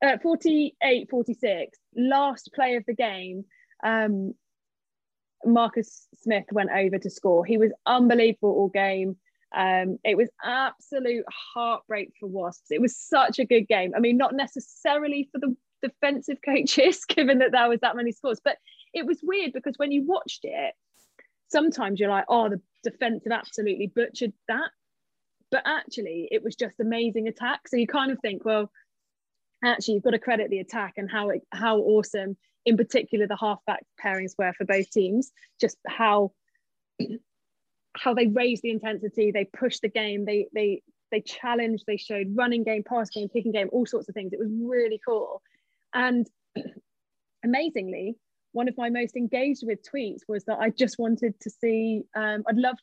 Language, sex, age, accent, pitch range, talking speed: English, female, 20-39, British, 205-250 Hz, 170 wpm